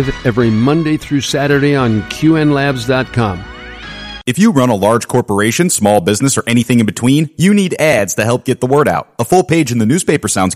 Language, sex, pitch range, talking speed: English, male, 105-140 Hz, 195 wpm